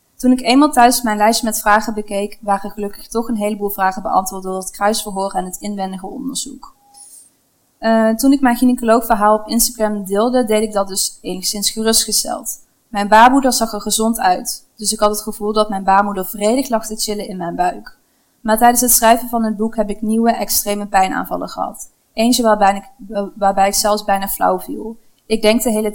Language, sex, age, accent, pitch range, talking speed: Dutch, female, 20-39, Dutch, 200-235 Hz, 195 wpm